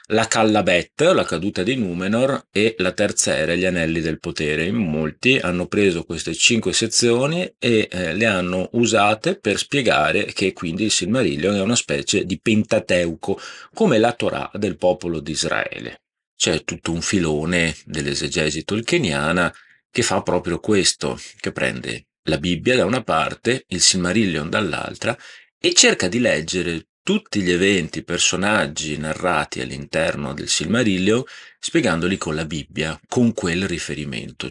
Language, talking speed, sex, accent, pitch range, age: Italian, 145 wpm, male, native, 80-110 Hz, 40-59